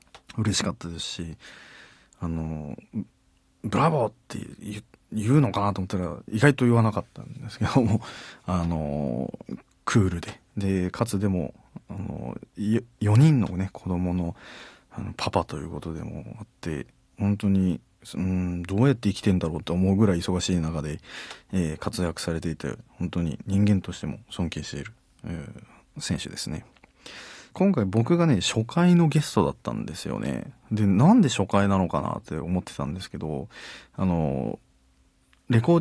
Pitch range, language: 85-125 Hz, Japanese